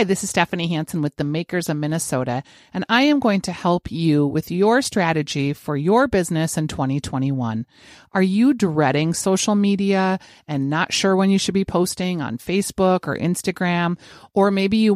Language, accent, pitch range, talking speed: English, American, 155-200 Hz, 180 wpm